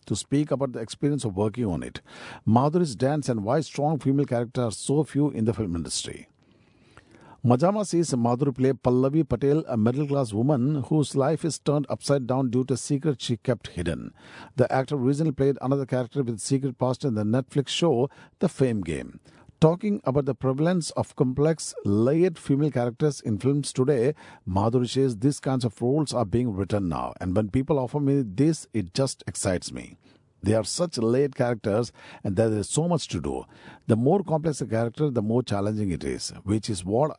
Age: 50-69